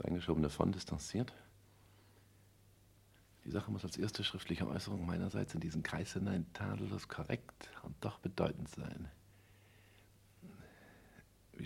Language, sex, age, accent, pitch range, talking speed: German, male, 50-69, German, 95-105 Hz, 115 wpm